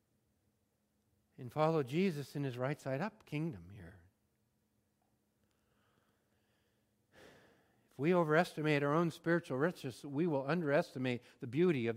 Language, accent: English, American